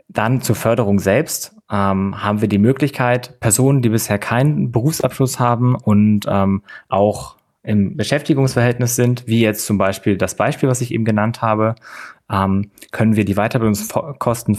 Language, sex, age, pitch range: German, male, 20-39, 105-125 Hz